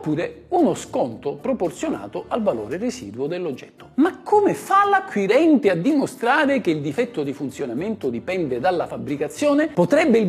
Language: Italian